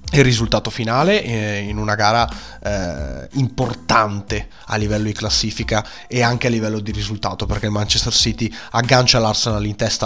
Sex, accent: male, native